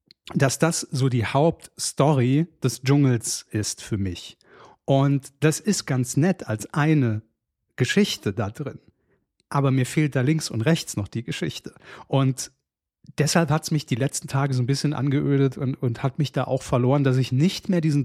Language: German